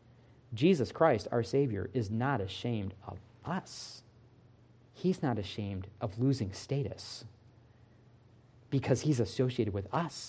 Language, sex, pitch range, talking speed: English, male, 120-145 Hz, 115 wpm